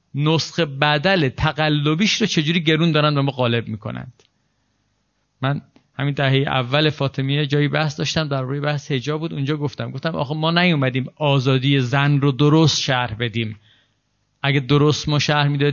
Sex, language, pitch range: male, Persian, 140-190 Hz